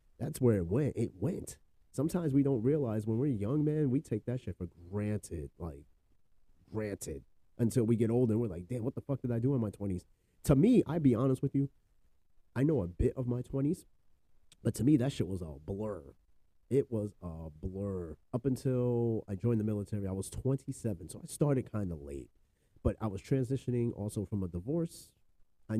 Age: 30-49